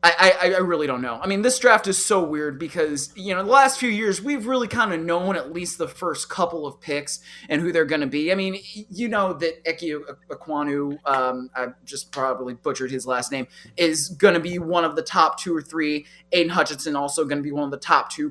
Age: 20-39